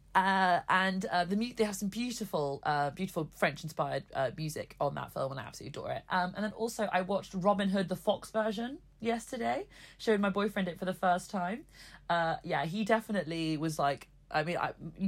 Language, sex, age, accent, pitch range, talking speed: English, female, 30-49, British, 155-200 Hz, 205 wpm